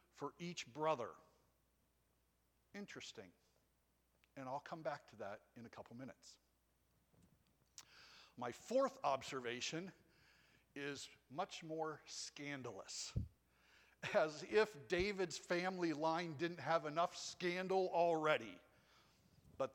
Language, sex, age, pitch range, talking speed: English, male, 60-79, 135-175 Hz, 95 wpm